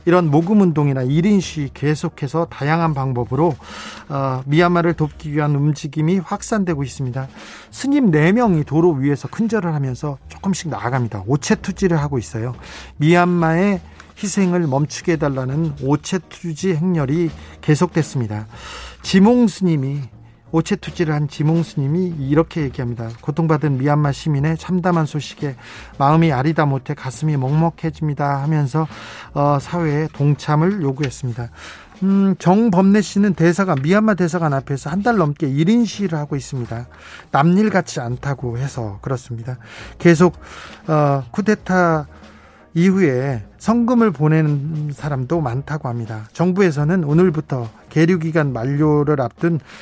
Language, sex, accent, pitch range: Korean, male, native, 135-175 Hz